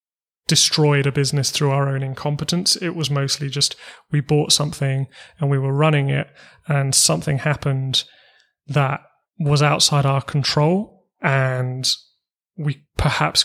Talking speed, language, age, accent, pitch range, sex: 135 wpm, English, 30-49, British, 140-155 Hz, male